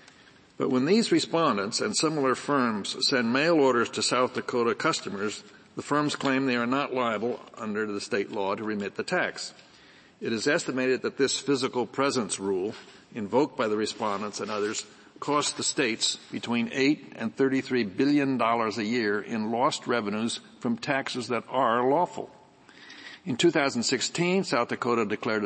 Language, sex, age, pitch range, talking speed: English, male, 60-79, 110-135 Hz, 155 wpm